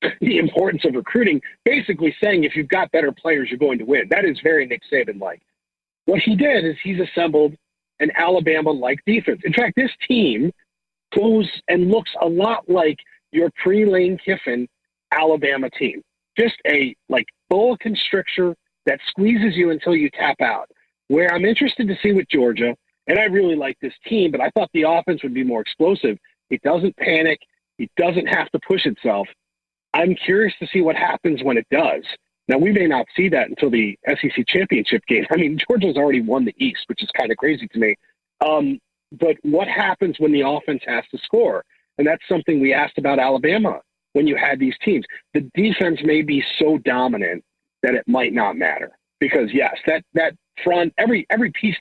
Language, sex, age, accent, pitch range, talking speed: English, male, 40-59, American, 145-205 Hz, 190 wpm